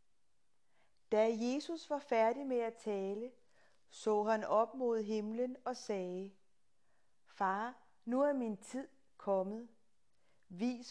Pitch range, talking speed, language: 210-245 Hz, 115 wpm, Danish